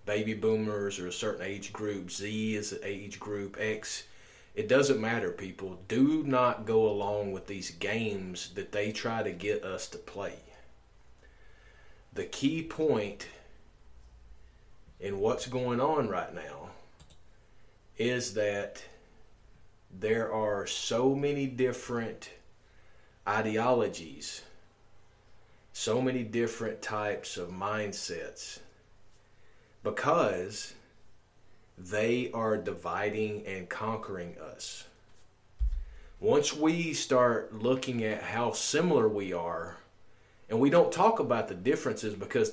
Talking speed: 110 wpm